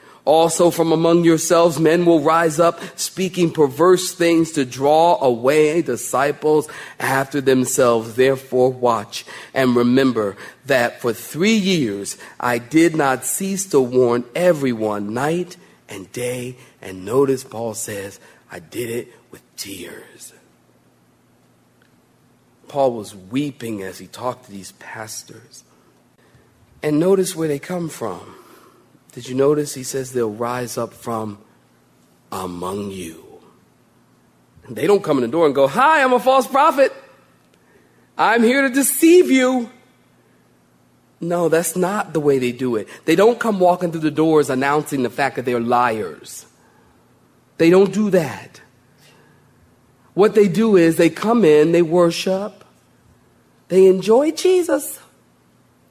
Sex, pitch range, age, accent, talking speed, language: male, 115-175 Hz, 40-59, American, 135 wpm, English